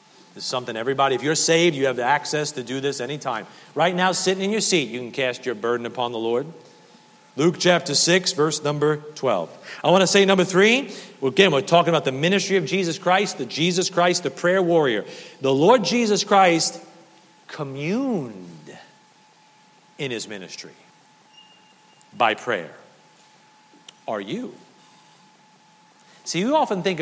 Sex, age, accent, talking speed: male, 40-59, American, 160 wpm